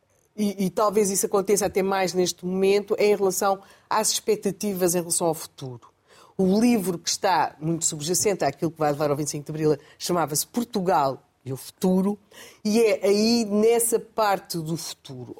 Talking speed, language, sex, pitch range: 170 wpm, Portuguese, female, 155-210 Hz